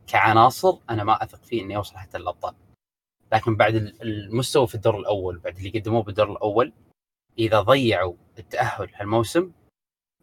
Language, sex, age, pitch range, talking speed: Arabic, male, 20-39, 105-120 Hz, 145 wpm